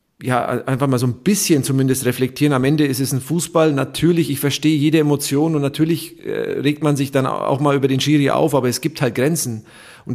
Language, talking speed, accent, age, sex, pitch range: German, 220 wpm, German, 40-59, male, 130-155 Hz